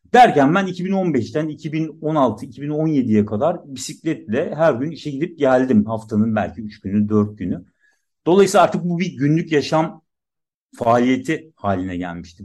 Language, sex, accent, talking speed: Turkish, male, native, 125 wpm